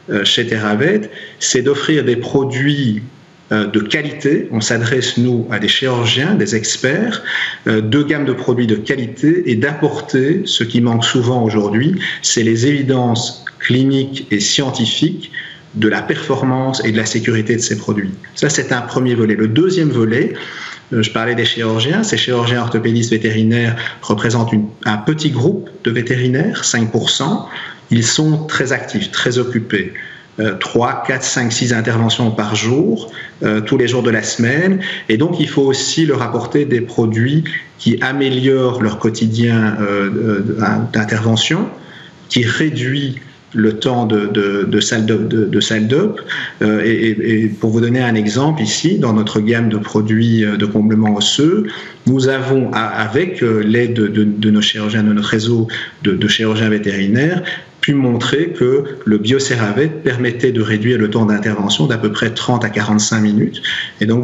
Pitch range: 110-135 Hz